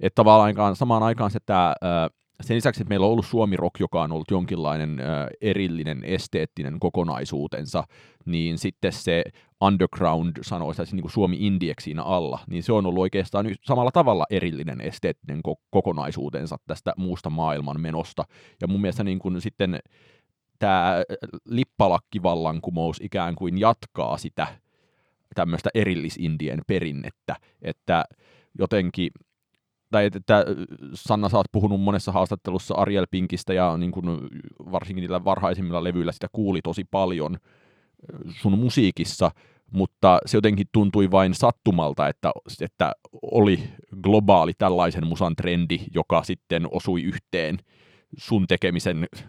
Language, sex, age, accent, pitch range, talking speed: Finnish, male, 30-49, native, 85-105 Hz, 120 wpm